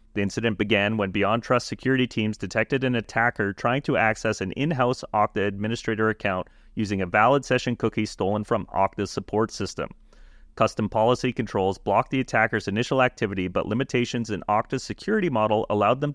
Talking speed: 165 wpm